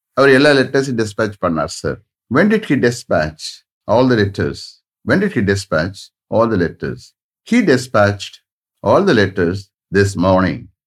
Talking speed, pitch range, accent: 135 wpm, 95-125 Hz, Indian